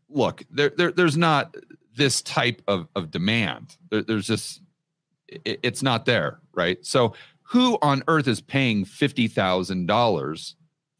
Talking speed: 135 wpm